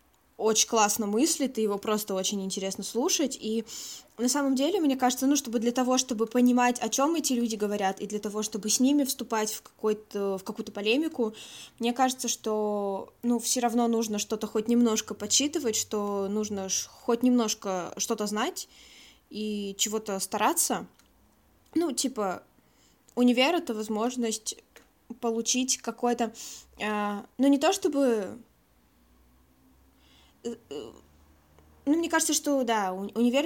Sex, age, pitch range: female, 20-39, 210-250 Hz